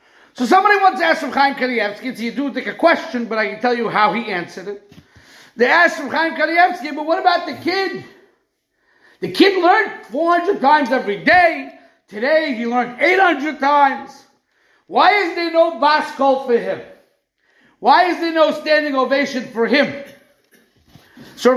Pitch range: 250-320 Hz